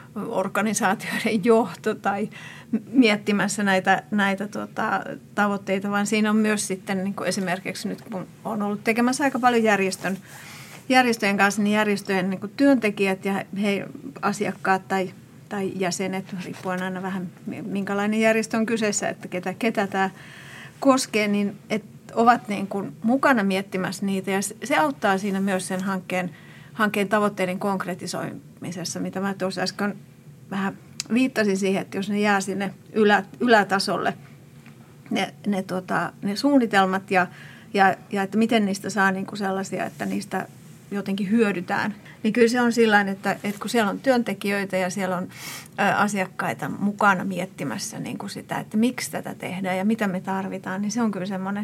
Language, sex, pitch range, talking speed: Finnish, female, 190-215 Hz, 150 wpm